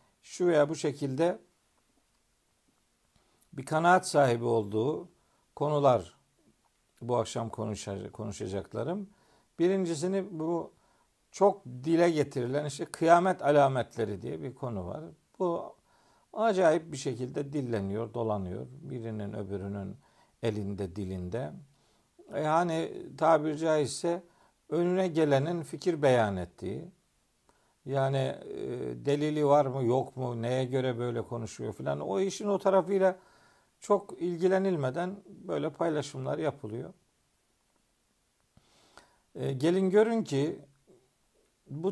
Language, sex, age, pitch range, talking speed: Turkish, male, 50-69, 120-175 Hz, 95 wpm